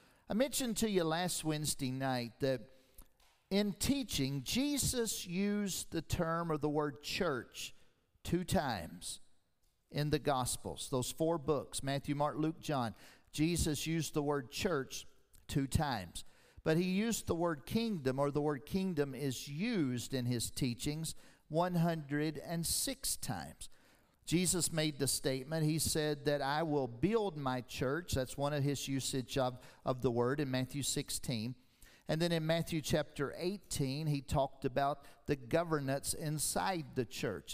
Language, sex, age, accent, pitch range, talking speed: English, male, 50-69, American, 135-180 Hz, 145 wpm